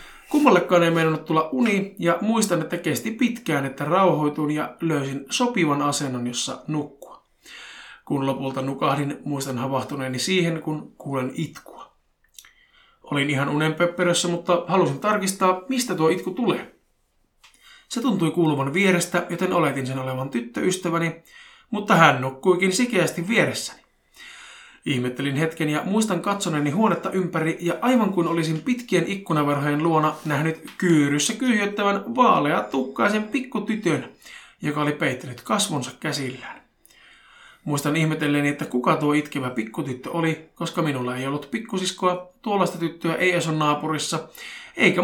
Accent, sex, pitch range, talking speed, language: native, male, 145-190 Hz, 125 wpm, Finnish